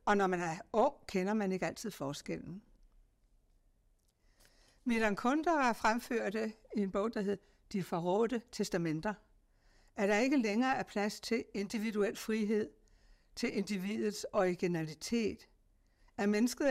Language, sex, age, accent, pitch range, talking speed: Danish, female, 60-79, native, 185-235 Hz, 135 wpm